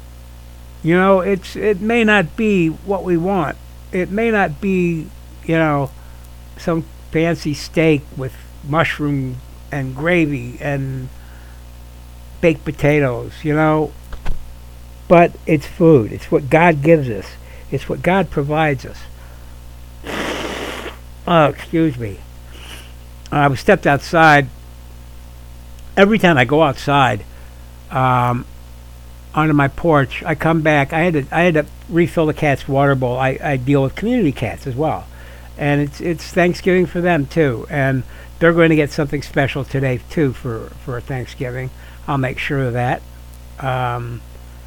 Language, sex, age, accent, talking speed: English, male, 60-79, American, 140 wpm